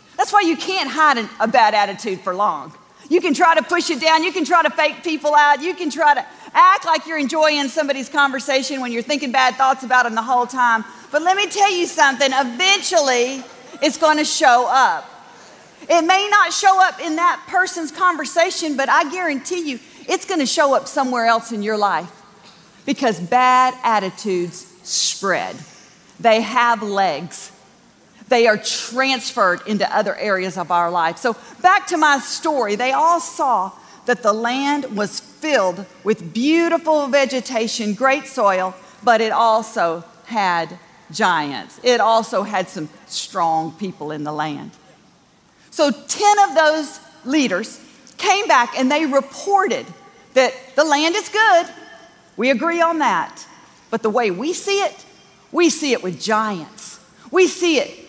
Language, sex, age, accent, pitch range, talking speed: English, female, 40-59, American, 220-320 Hz, 165 wpm